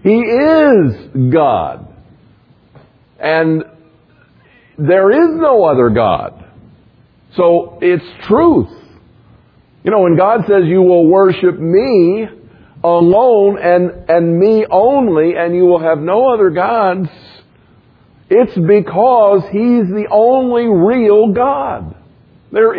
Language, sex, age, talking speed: English, male, 50-69, 110 wpm